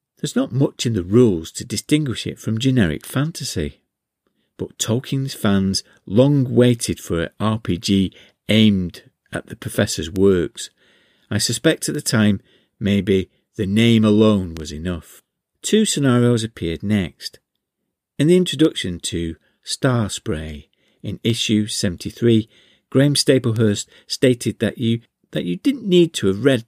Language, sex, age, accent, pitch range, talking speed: English, male, 50-69, British, 95-125 Hz, 140 wpm